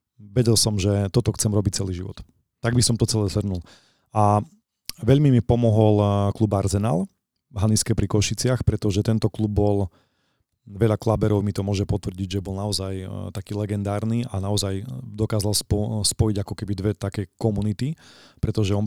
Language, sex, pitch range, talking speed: Slovak, male, 100-115 Hz, 165 wpm